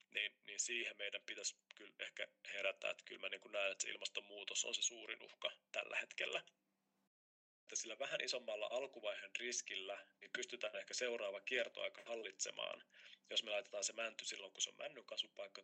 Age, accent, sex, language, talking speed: 30-49, native, male, Finnish, 170 wpm